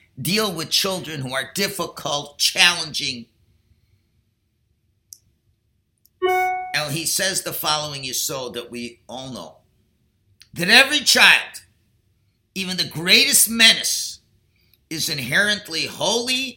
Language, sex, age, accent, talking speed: English, male, 50-69, American, 100 wpm